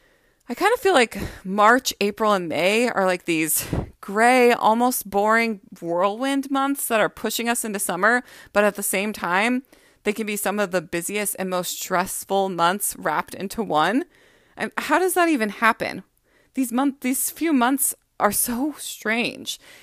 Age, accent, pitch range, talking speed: 20-39, American, 200-270 Hz, 170 wpm